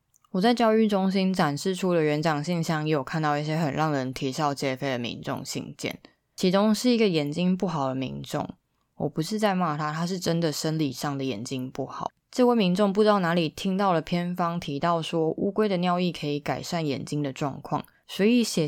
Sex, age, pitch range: female, 20-39, 145-190 Hz